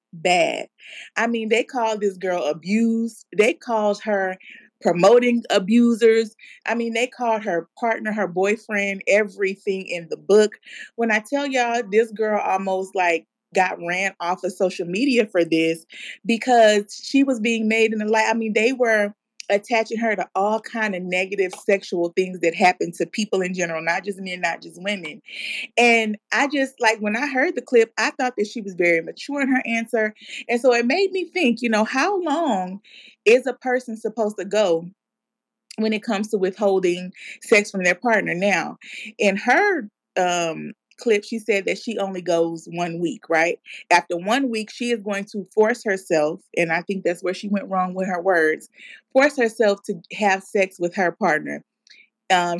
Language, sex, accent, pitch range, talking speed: English, female, American, 185-230 Hz, 185 wpm